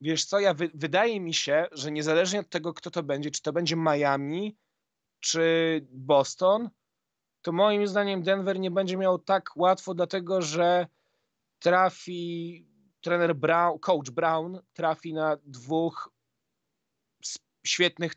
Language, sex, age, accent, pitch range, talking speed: Polish, male, 30-49, native, 140-170 Hz, 130 wpm